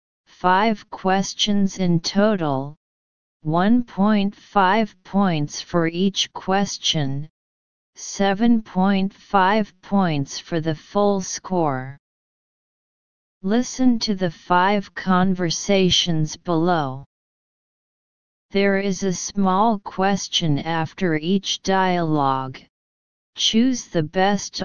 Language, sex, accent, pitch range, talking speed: English, female, American, 160-195 Hz, 80 wpm